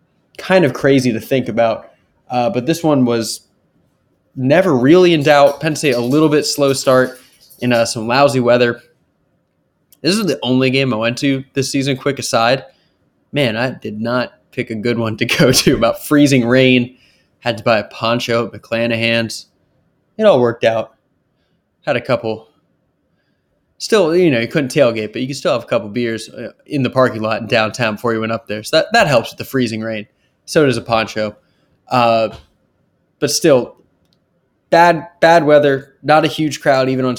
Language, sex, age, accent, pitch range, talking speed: English, male, 20-39, American, 115-140 Hz, 185 wpm